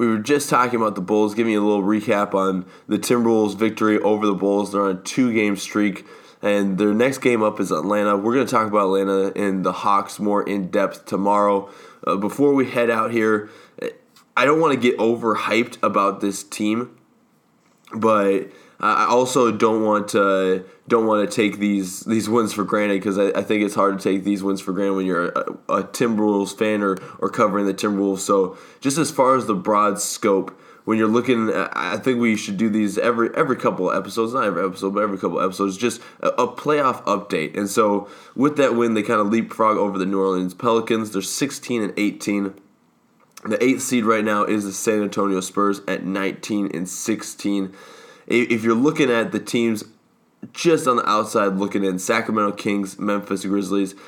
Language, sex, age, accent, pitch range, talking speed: English, male, 20-39, American, 100-115 Hz, 200 wpm